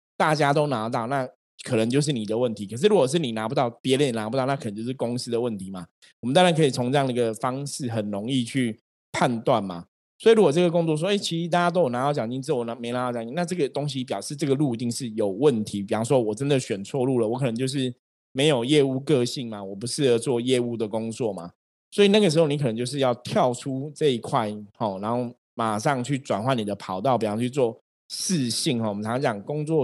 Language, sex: Chinese, male